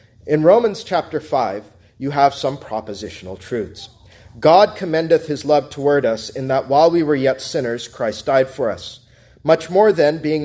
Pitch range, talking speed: 110-150 Hz, 170 wpm